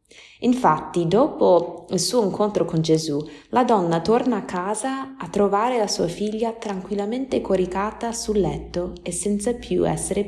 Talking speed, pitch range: 145 wpm, 155-205 Hz